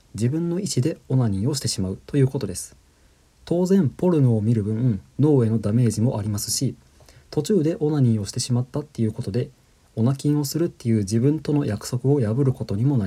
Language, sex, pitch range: Japanese, male, 110-150 Hz